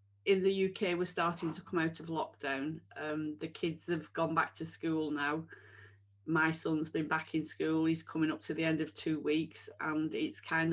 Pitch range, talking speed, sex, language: 135-170 Hz, 205 wpm, female, English